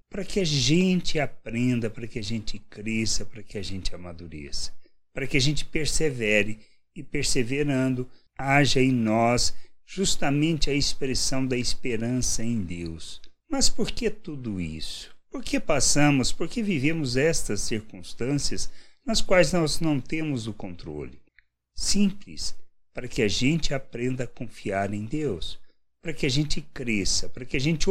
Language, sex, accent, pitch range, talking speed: Portuguese, male, Brazilian, 105-150 Hz, 155 wpm